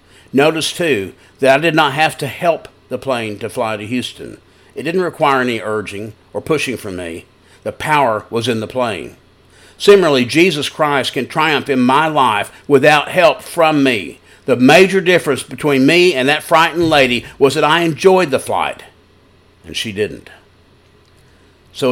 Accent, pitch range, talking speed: American, 100-145 Hz, 165 wpm